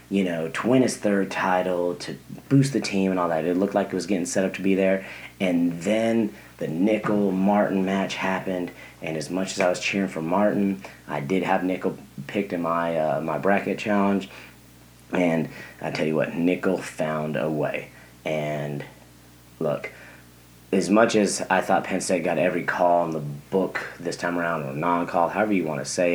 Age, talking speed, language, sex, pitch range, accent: 30-49, 195 wpm, English, male, 75-95 Hz, American